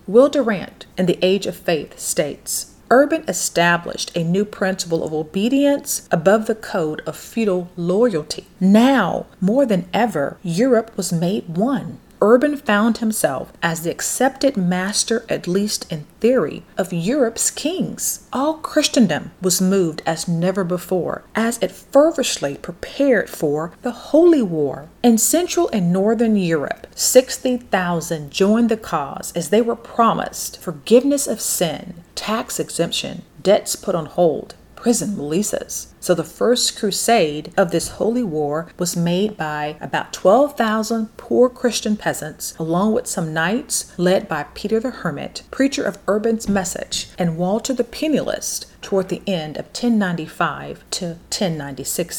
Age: 40-59